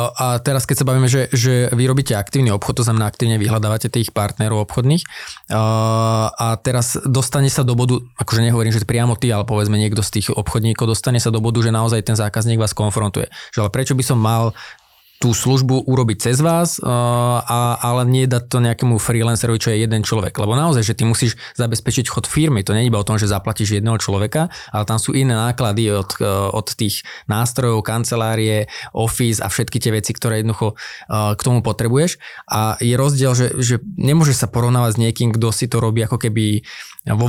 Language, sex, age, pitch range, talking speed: Slovak, male, 20-39, 110-125 Hz, 200 wpm